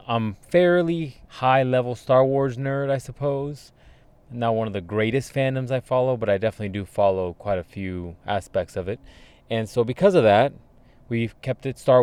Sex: male